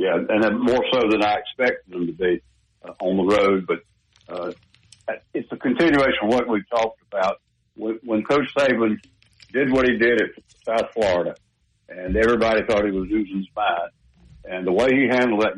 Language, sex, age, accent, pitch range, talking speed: English, male, 60-79, American, 95-120 Hz, 185 wpm